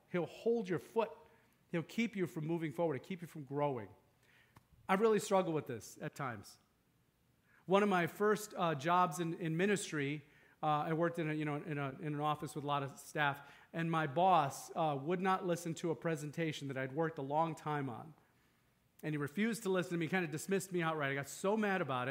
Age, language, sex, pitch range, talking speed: 40-59, English, male, 155-195 Hz, 225 wpm